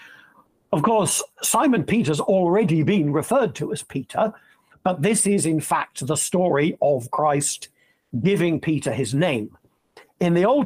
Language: English